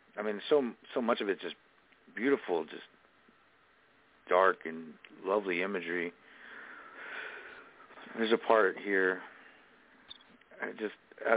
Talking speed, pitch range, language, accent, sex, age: 100 wpm, 95-130 Hz, English, American, male, 50-69